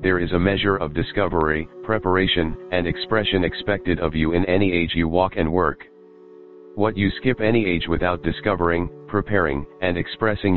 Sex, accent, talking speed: male, American, 165 wpm